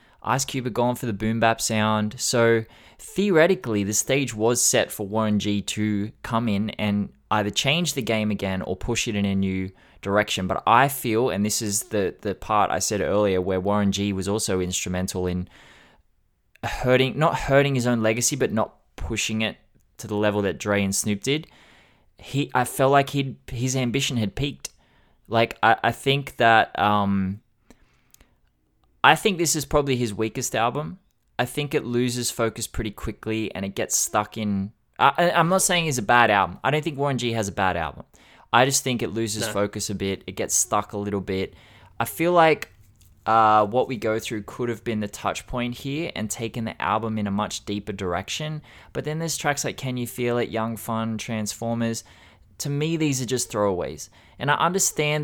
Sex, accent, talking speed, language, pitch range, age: male, Australian, 200 wpm, English, 100-125 Hz, 20-39